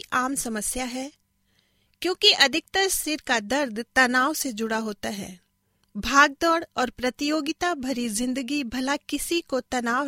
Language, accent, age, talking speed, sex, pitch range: Hindi, native, 40-59, 130 wpm, female, 220-300 Hz